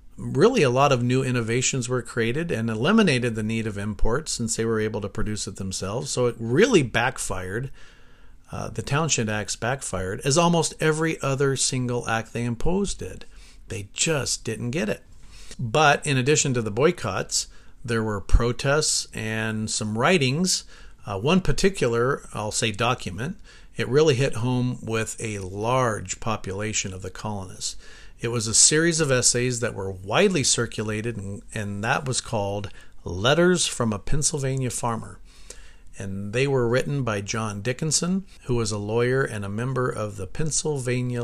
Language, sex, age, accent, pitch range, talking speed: English, male, 50-69, American, 105-130 Hz, 160 wpm